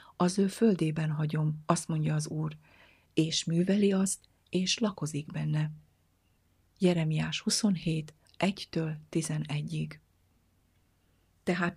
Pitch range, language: 155-185 Hz, Hungarian